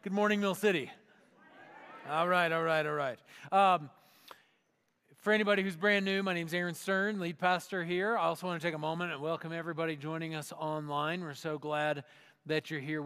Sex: male